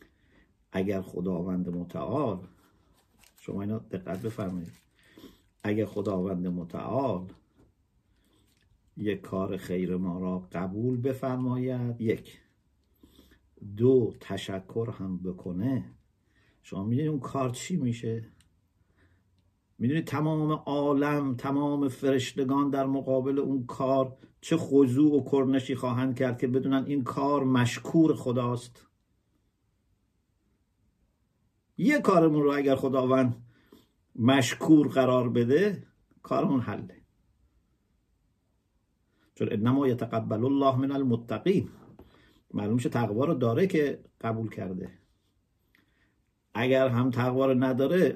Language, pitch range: English, 100-135 Hz